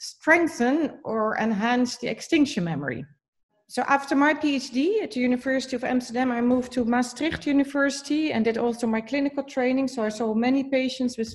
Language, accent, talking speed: English, Dutch, 170 wpm